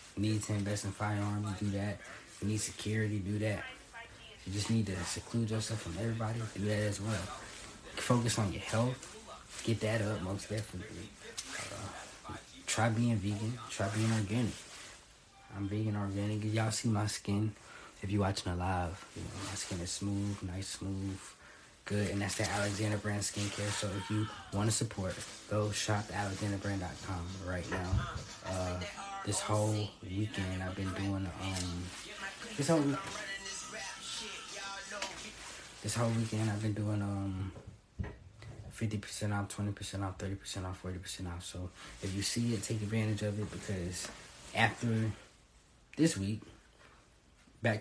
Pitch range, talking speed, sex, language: 95-110 Hz, 155 wpm, male, English